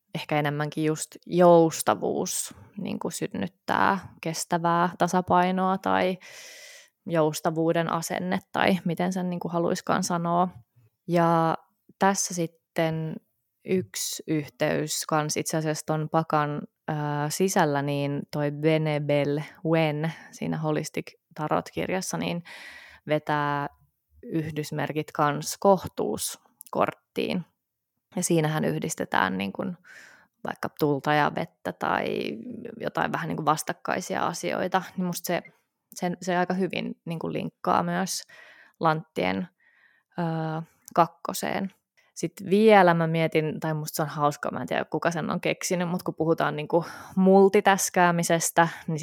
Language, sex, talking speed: Finnish, female, 110 wpm